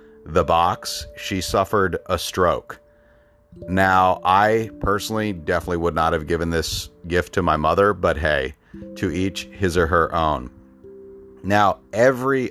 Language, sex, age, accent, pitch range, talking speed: English, male, 40-59, American, 80-100 Hz, 140 wpm